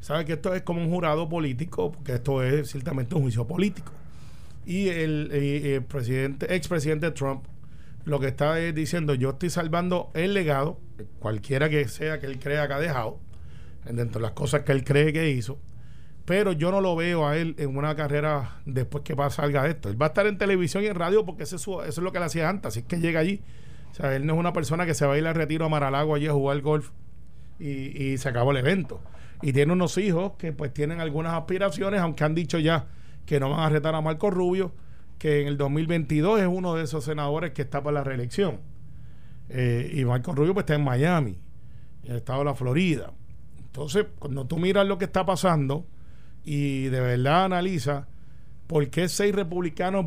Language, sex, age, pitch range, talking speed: Spanish, male, 40-59, 140-170 Hz, 210 wpm